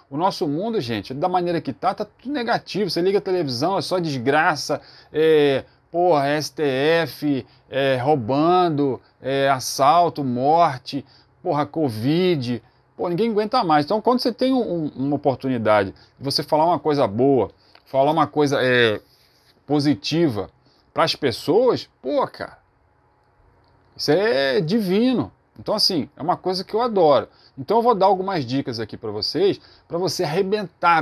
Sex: male